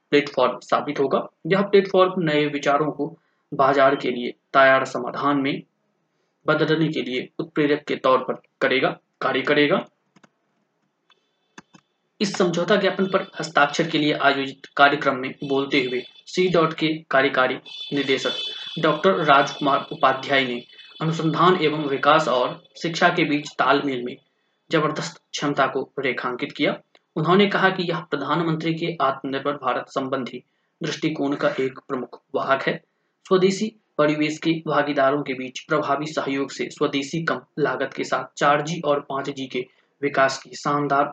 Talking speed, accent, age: 140 wpm, native, 20-39